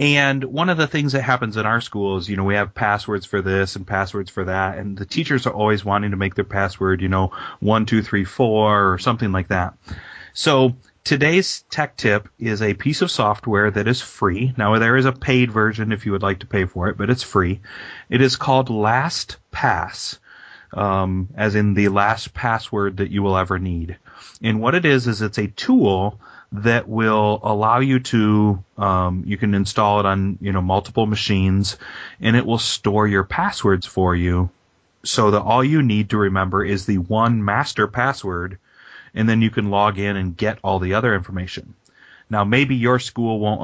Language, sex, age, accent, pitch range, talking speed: English, male, 30-49, American, 95-115 Hz, 200 wpm